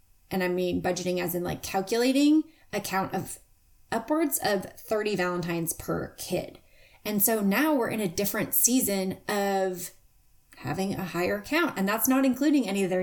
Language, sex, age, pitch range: English, female, 30-49, 190-235 Hz